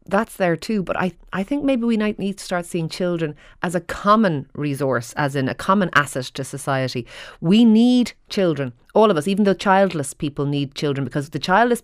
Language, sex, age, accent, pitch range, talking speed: English, female, 30-49, Irish, 140-195 Hz, 210 wpm